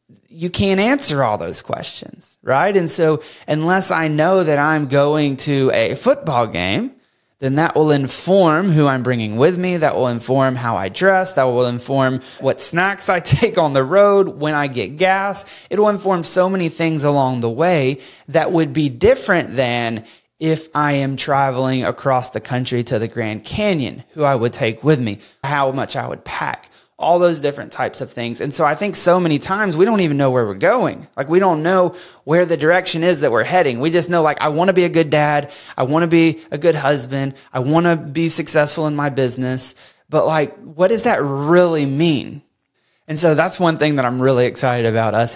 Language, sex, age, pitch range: English, male, 30-49, 130-170 Hz